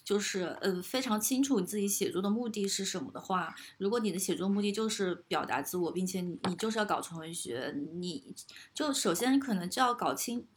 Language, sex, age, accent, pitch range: Chinese, female, 20-39, native, 180-225 Hz